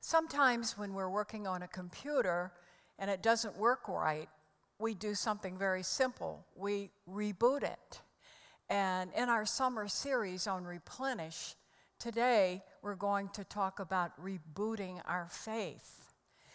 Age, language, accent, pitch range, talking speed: 60-79, English, American, 175-215 Hz, 130 wpm